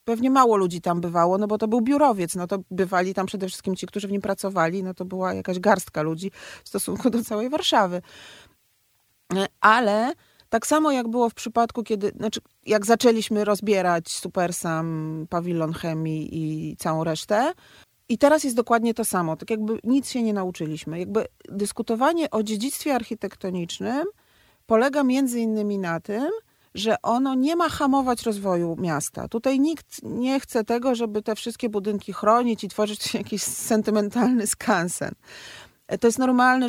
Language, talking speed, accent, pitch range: Polish, 160 wpm, native, 185-245 Hz